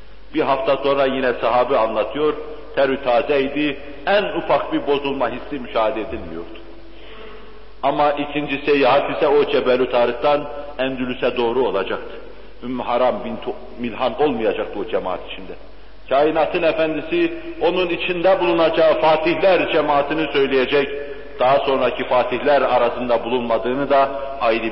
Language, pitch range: Turkish, 135-180 Hz